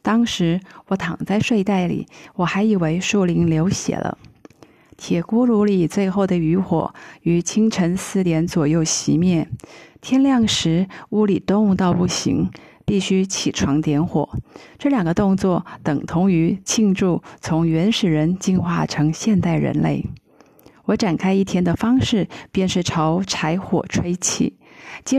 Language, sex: Chinese, female